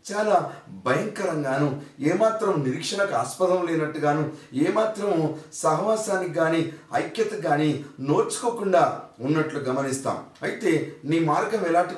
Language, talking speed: Telugu, 90 wpm